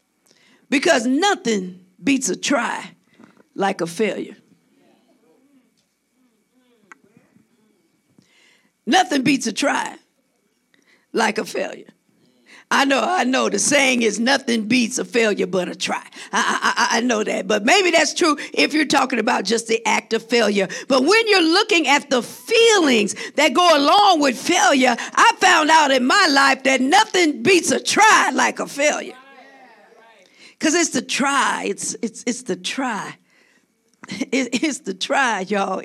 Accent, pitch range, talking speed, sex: American, 245-345 Hz, 145 wpm, female